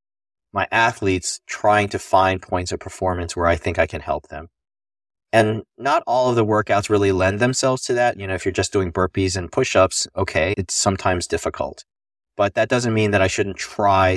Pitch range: 90-105 Hz